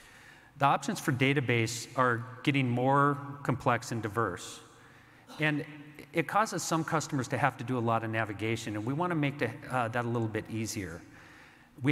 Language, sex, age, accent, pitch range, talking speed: English, male, 50-69, American, 115-140 Hz, 170 wpm